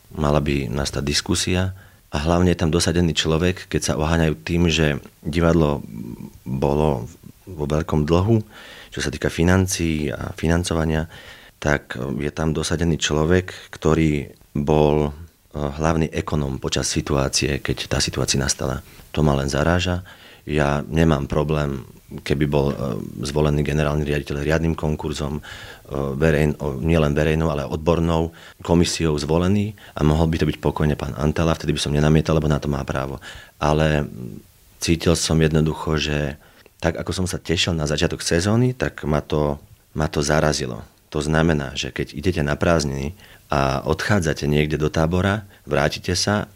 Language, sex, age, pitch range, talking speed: Slovak, male, 40-59, 75-85 Hz, 145 wpm